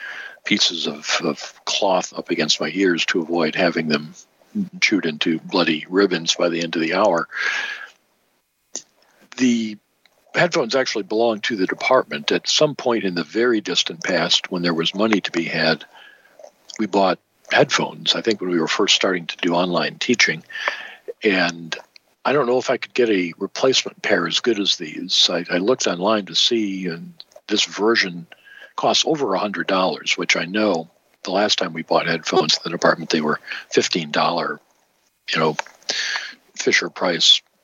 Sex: male